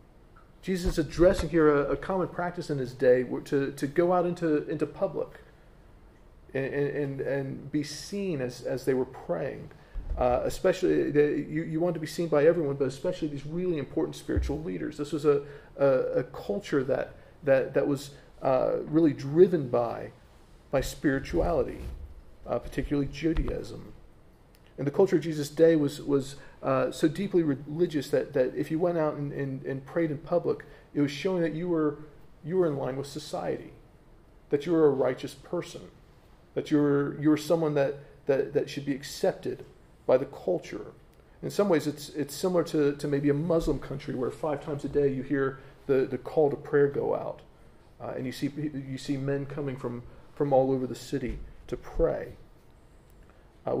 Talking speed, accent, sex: 185 wpm, American, male